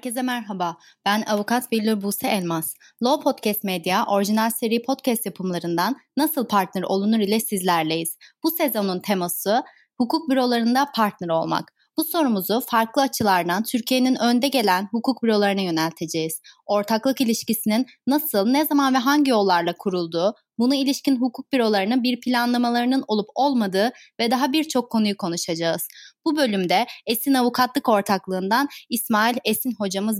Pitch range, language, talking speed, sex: 200-270 Hz, Turkish, 130 wpm, female